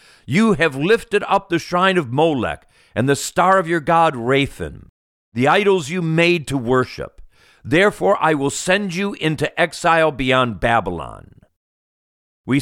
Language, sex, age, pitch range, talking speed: English, male, 50-69, 115-170 Hz, 145 wpm